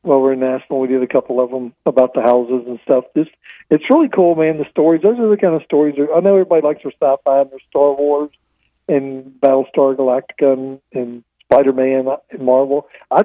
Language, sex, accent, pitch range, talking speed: English, male, American, 130-150 Hz, 215 wpm